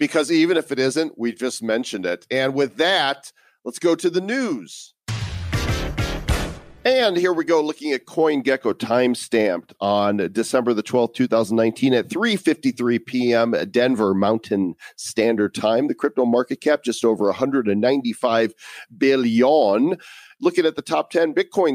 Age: 40-59